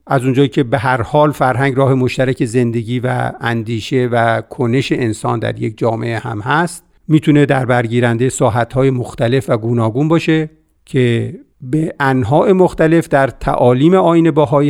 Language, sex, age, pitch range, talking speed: Persian, male, 50-69, 120-150 Hz, 145 wpm